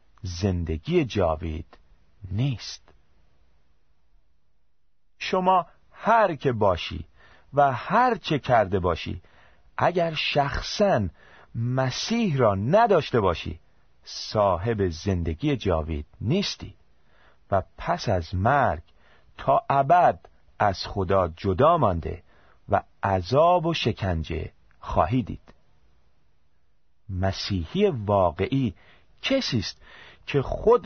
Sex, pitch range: male, 80-135 Hz